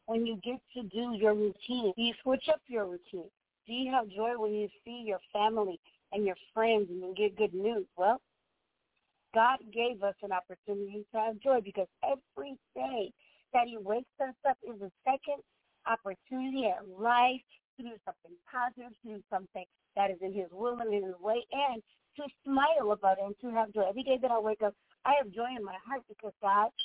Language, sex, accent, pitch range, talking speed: English, female, American, 205-265 Hz, 205 wpm